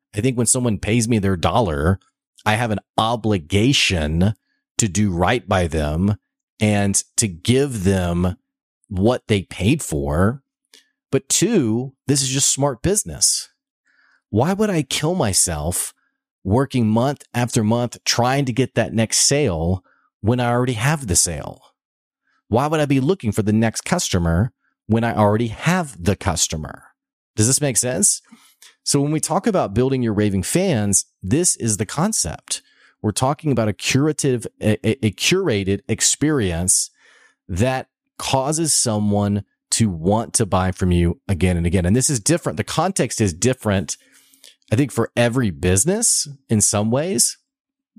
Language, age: English, 30-49